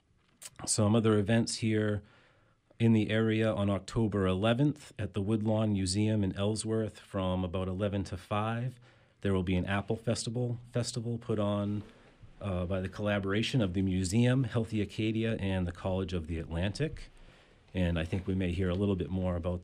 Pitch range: 95-115 Hz